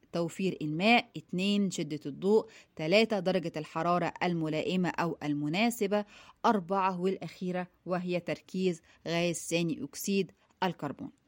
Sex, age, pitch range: female, 20-39, 175-220 Hz